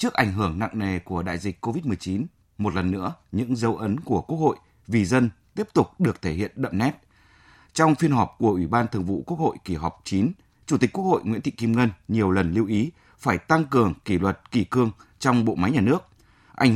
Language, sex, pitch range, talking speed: Vietnamese, male, 95-125 Hz, 235 wpm